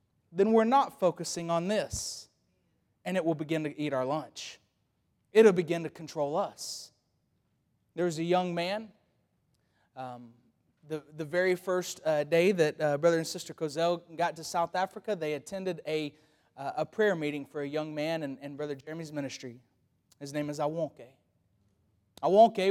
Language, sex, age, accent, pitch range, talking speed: English, male, 30-49, American, 150-200 Hz, 165 wpm